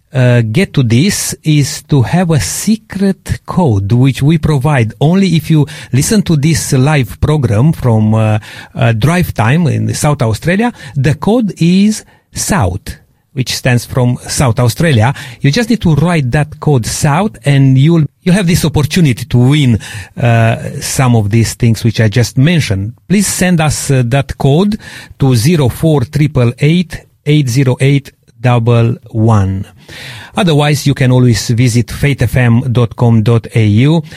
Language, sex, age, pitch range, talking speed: English, male, 40-59, 115-150 Hz, 150 wpm